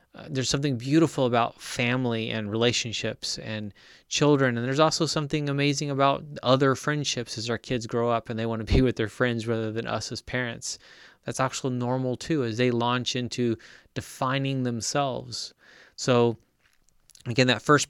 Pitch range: 115-135 Hz